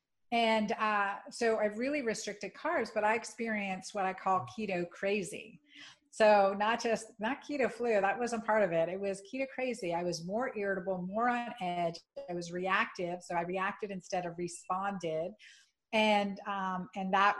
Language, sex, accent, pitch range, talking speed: English, female, American, 185-220 Hz, 170 wpm